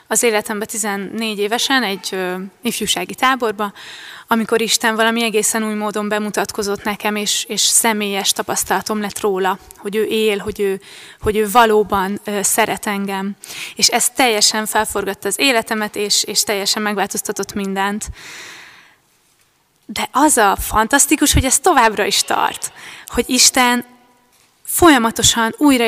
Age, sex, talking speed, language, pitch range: 20-39, female, 125 wpm, Hungarian, 205-230 Hz